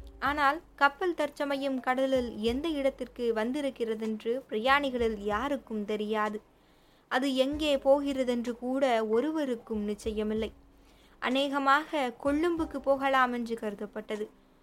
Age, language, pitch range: 20-39, Tamil, 225-275 Hz